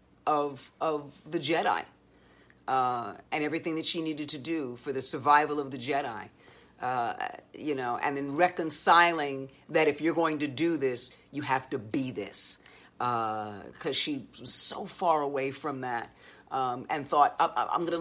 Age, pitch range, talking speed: 50-69, 140-170 Hz, 165 wpm